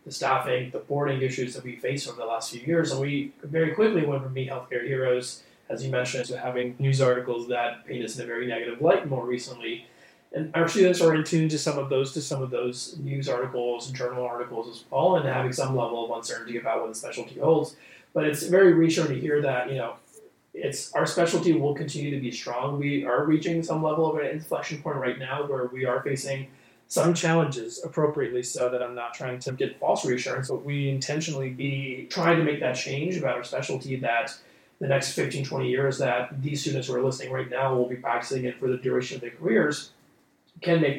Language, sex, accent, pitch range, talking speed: English, male, American, 125-150 Hz, 225 wpm